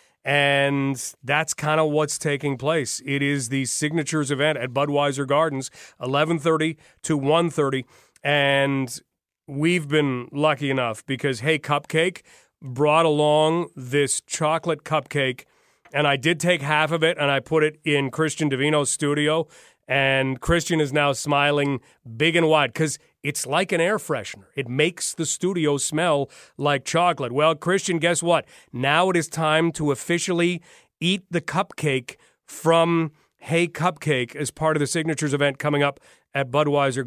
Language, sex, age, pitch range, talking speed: English, male, 40-59, 140-165 Hz, 150 wpm